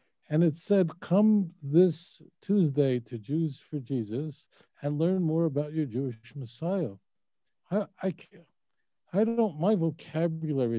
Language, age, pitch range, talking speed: English, 50-69, 115-165 Hz, 135 wpm